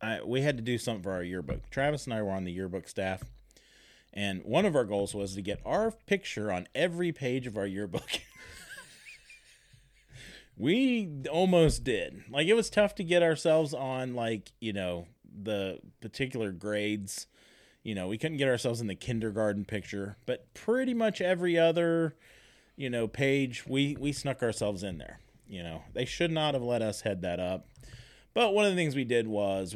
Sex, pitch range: male, 100-135 Hz